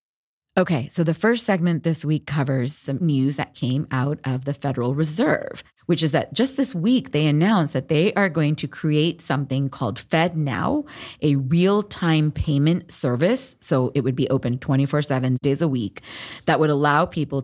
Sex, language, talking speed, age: female, English, 175 wpm, 30-49